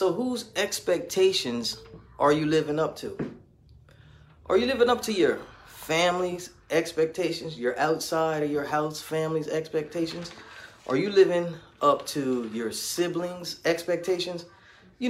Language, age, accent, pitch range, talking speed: English, 30-49, American, 150-195 Hz, 125 wpm